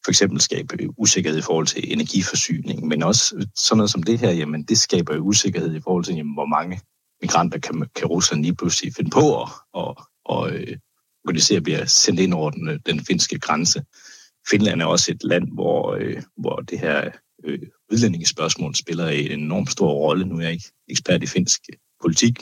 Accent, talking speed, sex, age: native, 195 wpm, male, 60-79